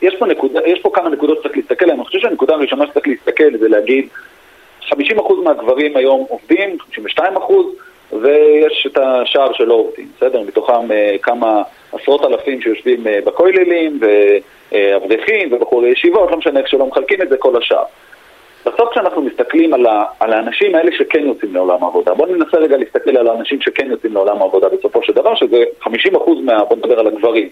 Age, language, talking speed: 40-59, Hebrew, 165 wpm